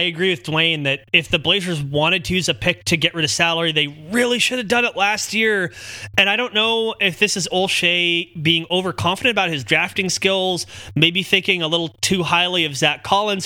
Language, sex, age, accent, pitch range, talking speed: English, male, 20-39, American, 145-185 Hz, 220 wpm